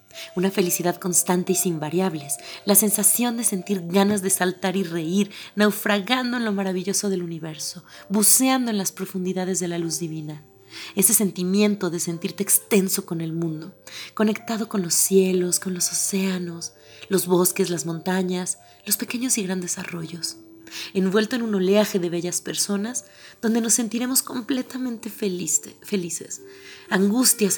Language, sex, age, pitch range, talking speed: Spanish, female, 30-49, 180-220 Hz, 145 wpm